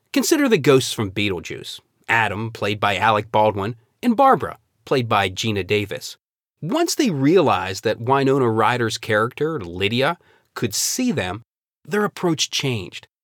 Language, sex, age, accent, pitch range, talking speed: English, male, 30-49, American, 115-175 Hz, 130 wpm